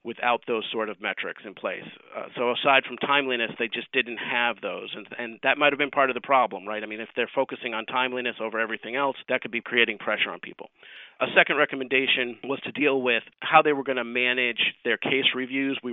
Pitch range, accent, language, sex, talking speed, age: 115-135 Hz, American, English, male, 225 wpm, 40-59